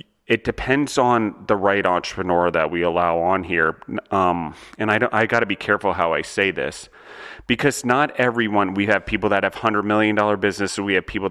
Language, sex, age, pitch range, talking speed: English, male, 30-49, 95-110 Hz, 195 wpm